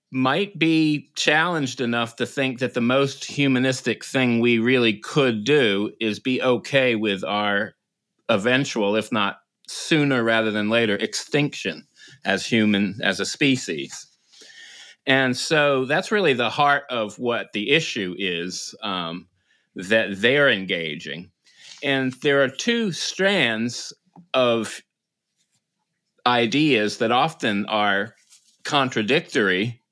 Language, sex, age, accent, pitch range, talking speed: English, male, 30-49, American, 105-135 Hz, 120 wpm